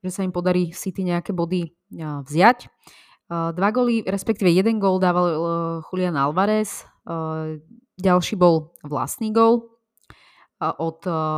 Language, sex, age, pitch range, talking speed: Slovak, female, 20-39, 165-195 Hz, 115 wpm